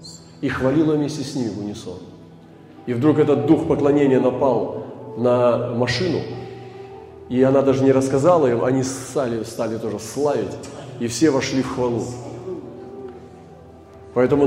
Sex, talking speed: male, 135 wpm